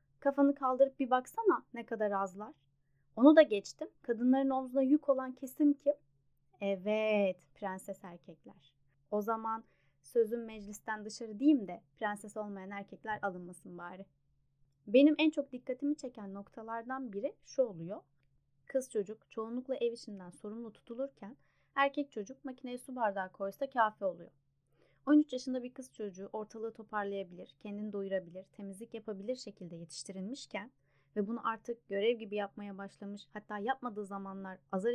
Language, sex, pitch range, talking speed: Turkish, female, 195-255 Hz, 135 wpm